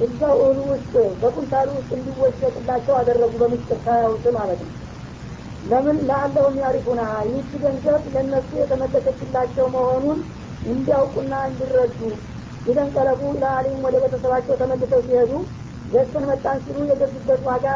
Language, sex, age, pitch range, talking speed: Amharic, female, 50-69, 255-275 Hz, 110 wpm